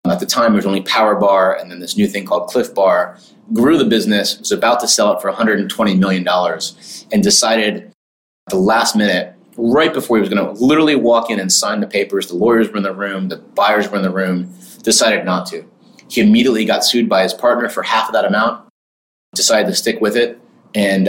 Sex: male